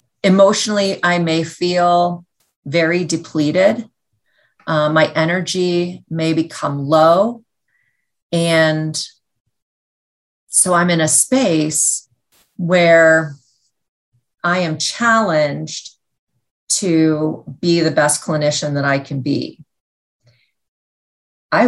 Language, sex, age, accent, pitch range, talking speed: English, female, 40-59, American, 145-170 Hz, 90 wpm